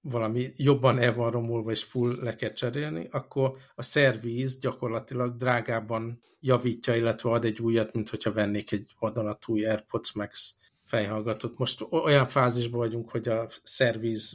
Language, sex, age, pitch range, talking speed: Hungarian, male, 60-79, 110-125 Hz, 140 wpm